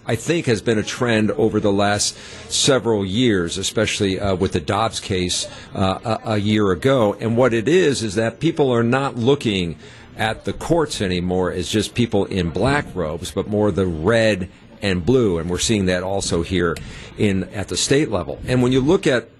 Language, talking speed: English, 200 wpm